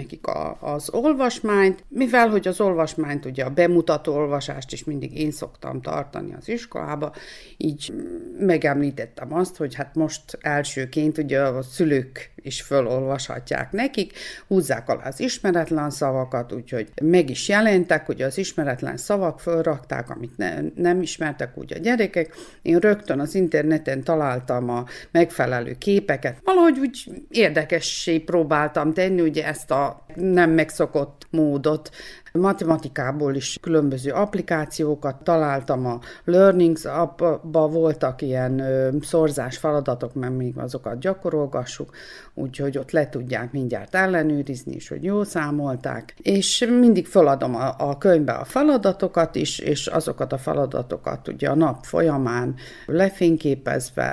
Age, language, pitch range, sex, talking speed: 60-79, Hungarian, 140-180 Hz, female, 125 wpm